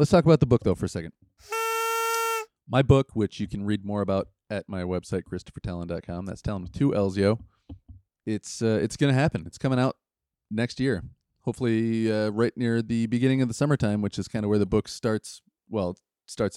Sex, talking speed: male, 195 wpm